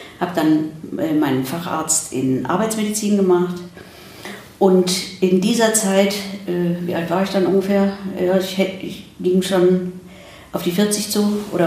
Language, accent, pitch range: German, German, 160-195 Hz